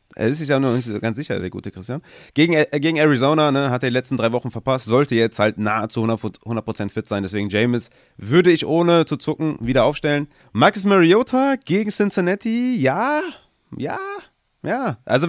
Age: 30-49